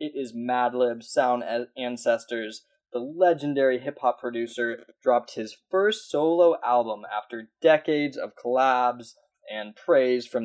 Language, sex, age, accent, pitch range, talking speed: English, male, 10-29, American, 120-165 Hz, 120 wpm